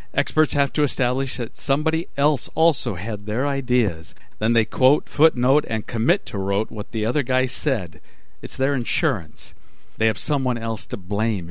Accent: American